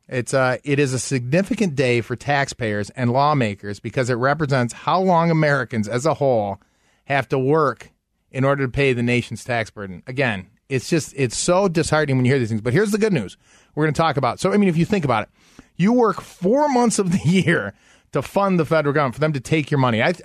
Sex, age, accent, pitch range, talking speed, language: male, 30-49, American, 125-165 Hz, 235 wpm, English